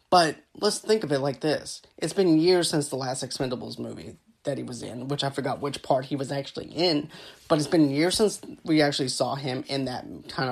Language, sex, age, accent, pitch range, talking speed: English, male, 30-49, American, 140-170 Hz, 230 wpm